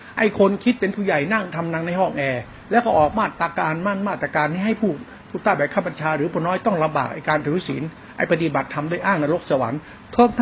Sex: male